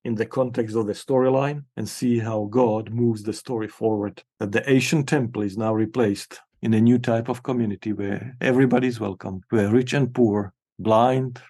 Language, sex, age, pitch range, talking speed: English, male, 50-69, 105-125 Hz, 190 wpm